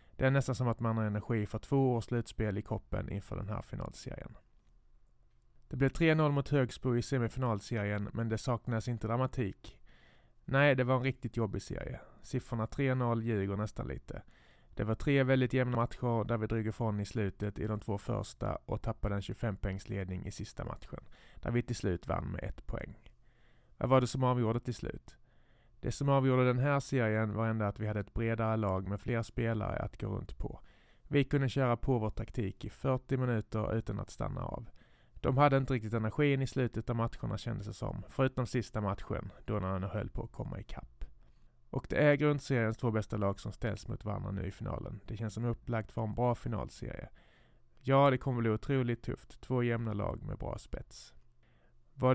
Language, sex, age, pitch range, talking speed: Swedish, male, 30-49, 105-130 Hz, 200 wpm